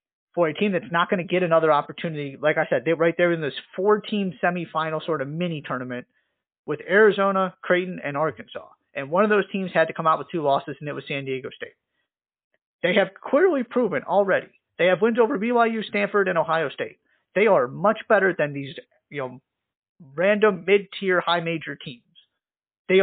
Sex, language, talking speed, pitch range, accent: male, English, 200 wpm, 145-185 Hz, American